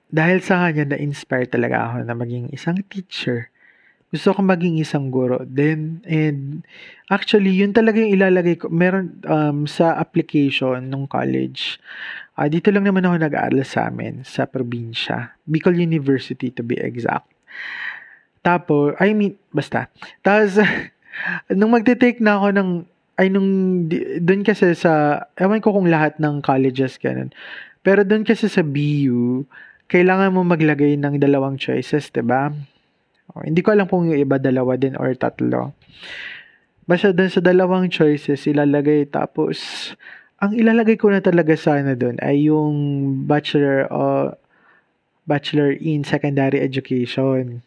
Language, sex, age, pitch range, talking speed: Filipino, male, 20-39, 135-185 Hz, 140 wpm